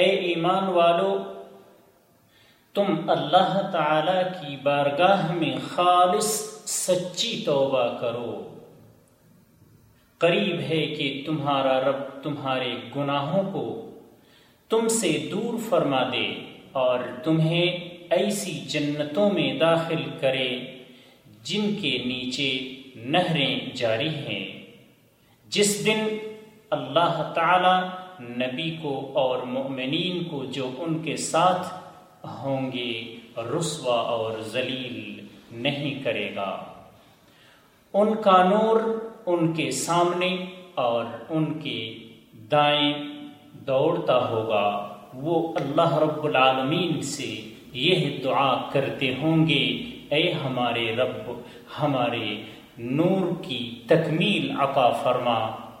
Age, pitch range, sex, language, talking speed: 40-59, 130-180 Hz, male, Urdu, 100 wpm